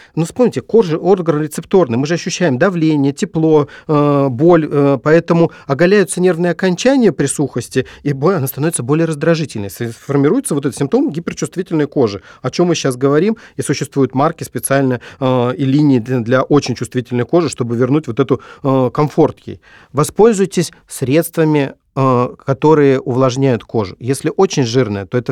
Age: 40-59